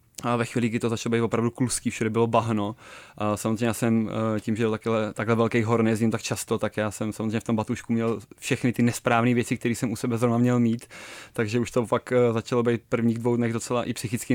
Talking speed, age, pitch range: 235 wpm, 20-39, 110-125 Hz